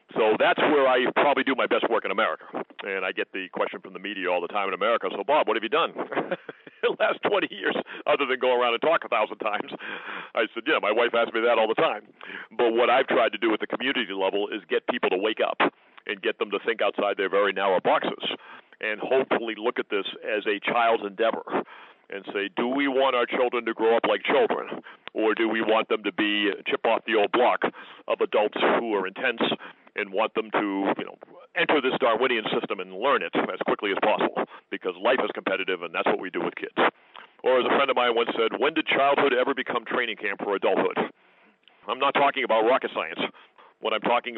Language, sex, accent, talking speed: English, male, American, 235 wpm